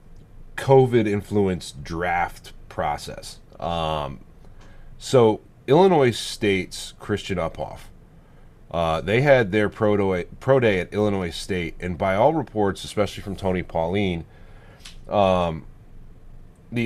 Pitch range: 90-120 Hz